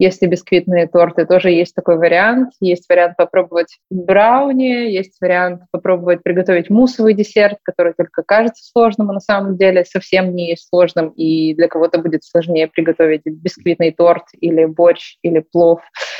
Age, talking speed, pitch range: 20-39, 150 wpm, 175-205 Hz